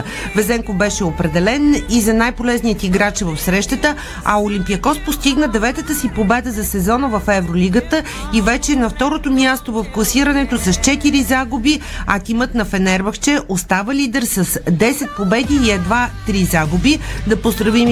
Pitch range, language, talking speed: 200-250 Hz, Bulgarian, 145 wpm